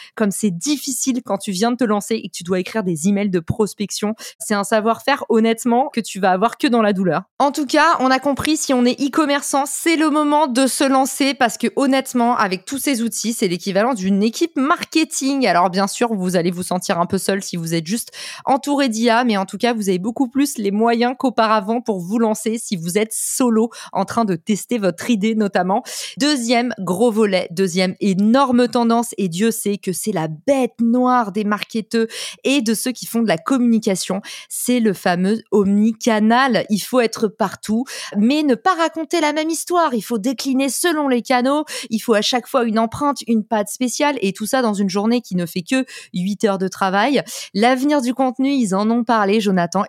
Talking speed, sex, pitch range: 210 wpm, female, 205-265 Hz